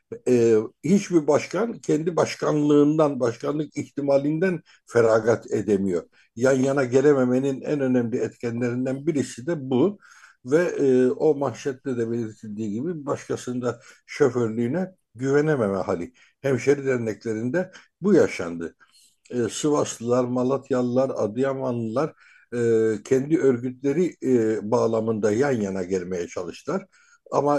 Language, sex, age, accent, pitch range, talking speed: Turkish, male, 60-79, native, 115-145 Hz, 105 wpm